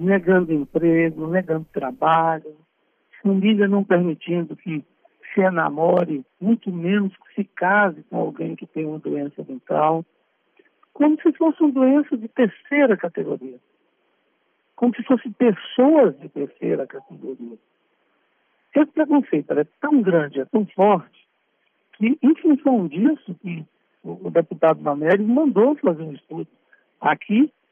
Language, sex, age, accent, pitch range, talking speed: Portuguese, male, 60-79, Brazilian, 175-285 Hz, 125 wpm